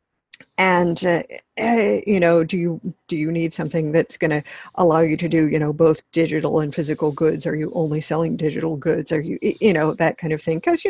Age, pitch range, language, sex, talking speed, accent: 50-69, 160-235 Hz, English, female, 225 wpm, American